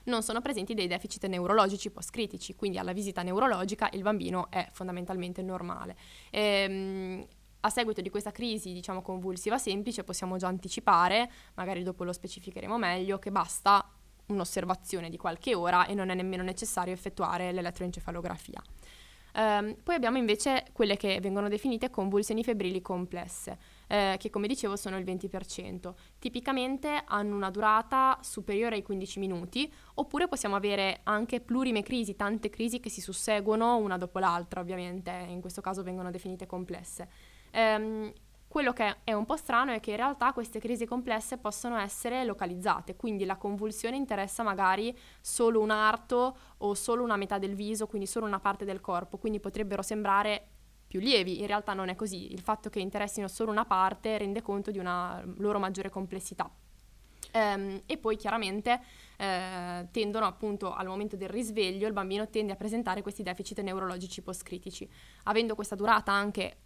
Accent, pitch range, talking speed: native, 190-220 Hz, 160 wpm